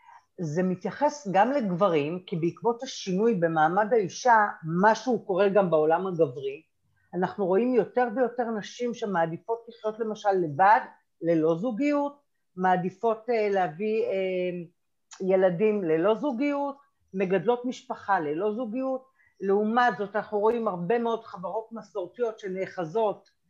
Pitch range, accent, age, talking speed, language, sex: 185-250 Hz, native, 50-69, 115 wpm, Hebrew, female